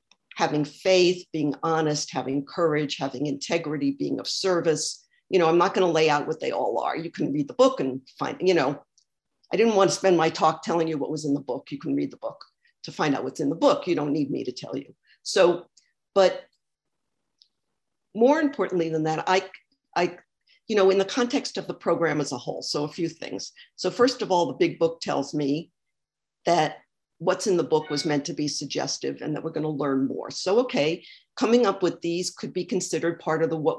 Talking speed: 220 wpm